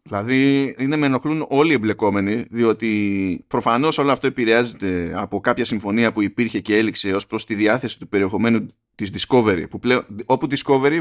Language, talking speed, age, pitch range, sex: Greek, 160 wpm, 20-39, 110-150 Hz, male